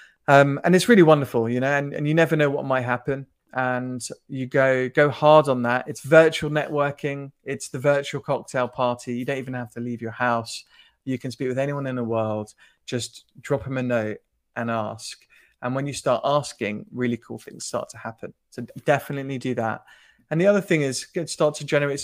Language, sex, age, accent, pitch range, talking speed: English, male, 20-39, British, 120-145 Hz, 210 wpm